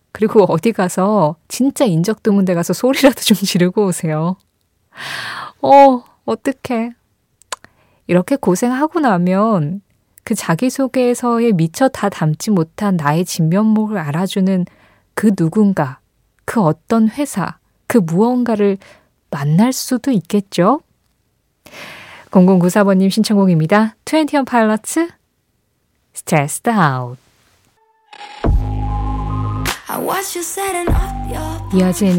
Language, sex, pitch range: Korean, female, 160-230 Hz